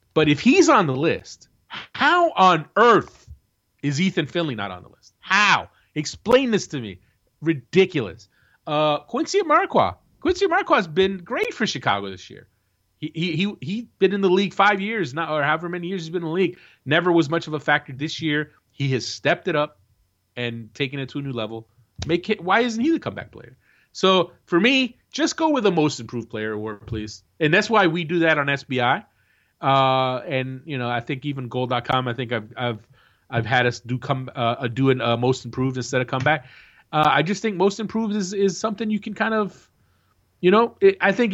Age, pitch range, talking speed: 30-49, 120-185 Hz, 210 wpm